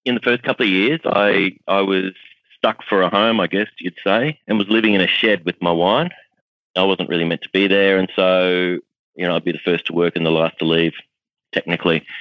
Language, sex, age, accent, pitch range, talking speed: English, male, 30-49, Australian, 80-90 Hz, 240 wpm